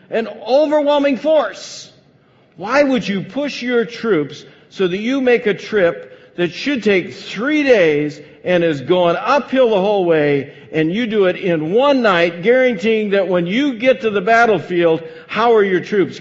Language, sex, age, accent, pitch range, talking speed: English, male, 50-69, American, 130-205 Hz, 170 wpm